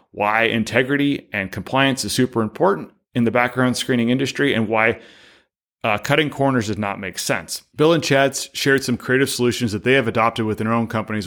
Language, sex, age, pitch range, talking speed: English, male, 30-49, 110-130 Hz, 190 wpm